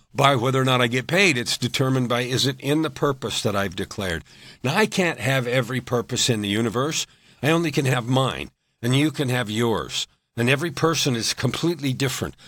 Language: English